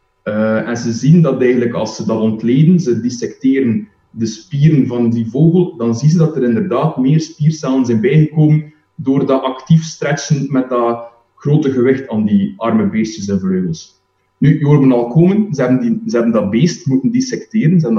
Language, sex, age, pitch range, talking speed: Dutch, male, 20-39, 120-160 Hz, 190 wpm